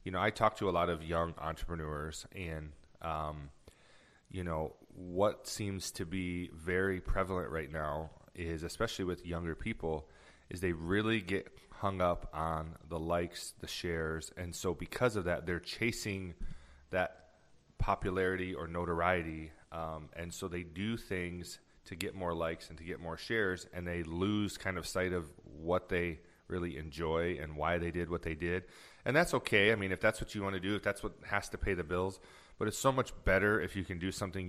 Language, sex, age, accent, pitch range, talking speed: English, male, 30-49, American, 80-95 Hz, 195 wpm